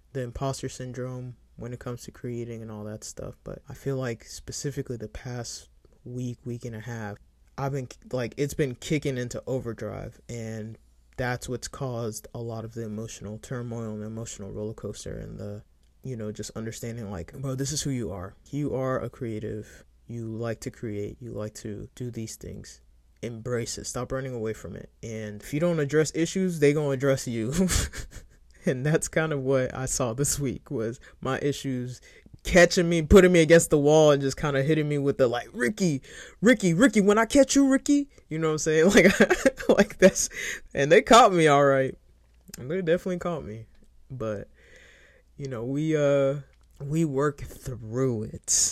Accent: American